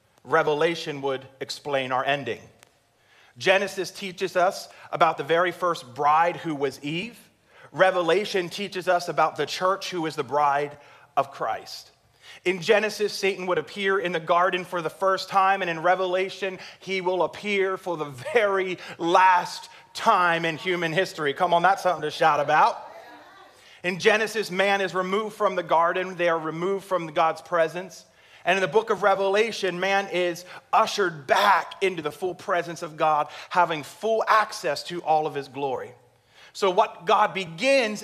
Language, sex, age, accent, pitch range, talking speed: English, male, 30-49, American, 145-190 Hz, 160 wpm